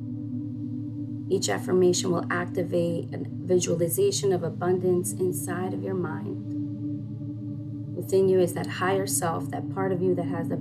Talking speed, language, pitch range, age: 140 wpm, English, 125-175 Hz, 30-49